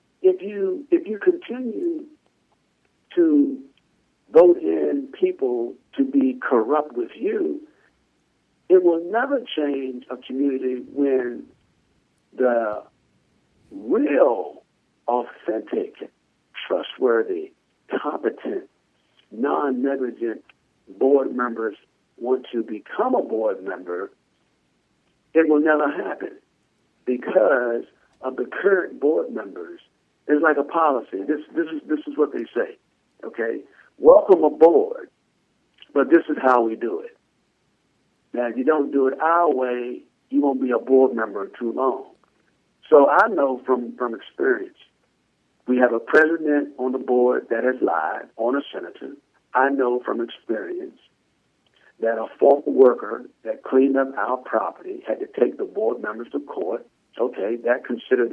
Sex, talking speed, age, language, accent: male, 130 wpm, 60-79, English, American